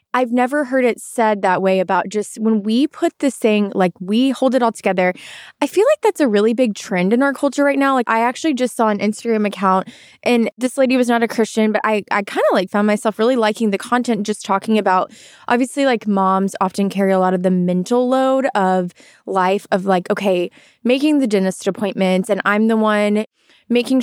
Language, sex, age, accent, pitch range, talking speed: English, female, 20-39, American, 195-245 Hz, 215 wpm